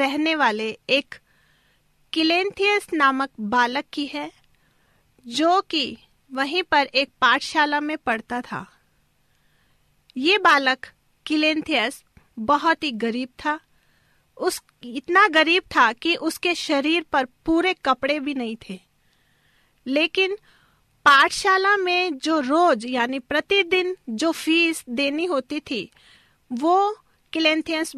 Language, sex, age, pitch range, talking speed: Hindi, female, 40-59, 260-330 Hz, 110 wpm